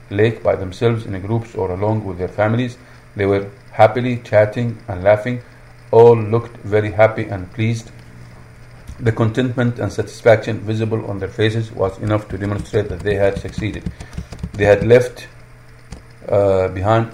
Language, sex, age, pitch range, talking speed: English, male, 50-69, 105-115 Hz, 155 wpm